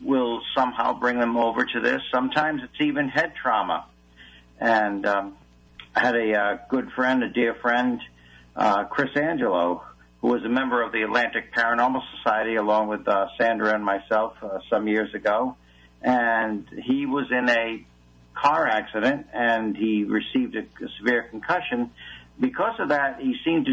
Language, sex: English, male